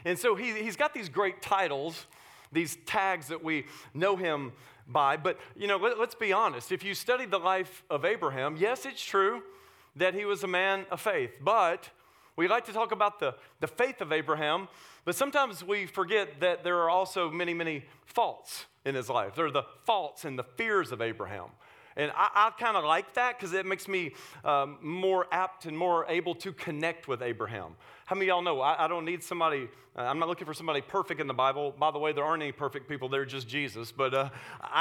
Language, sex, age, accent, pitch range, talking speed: English, male, 40-59, American, 155-210 Hz, 215 wpm